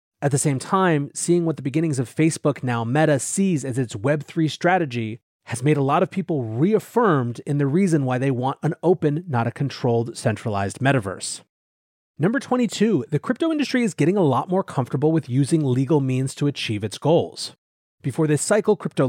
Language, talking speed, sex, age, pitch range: English, 190 wpm, male, 30-49, 130-175 Hz